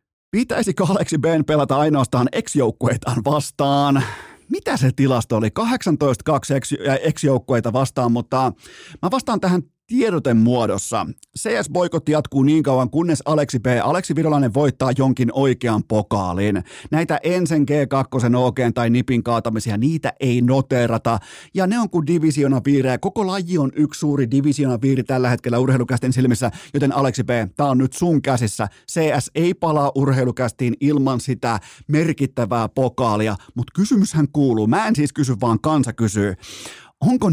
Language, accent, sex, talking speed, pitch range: Finnish, native, male, 140 wpm, 120-155 Hz